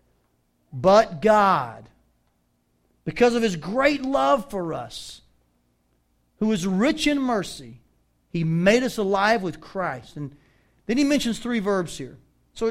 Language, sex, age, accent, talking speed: English, male, 40-59, American, 130 wpm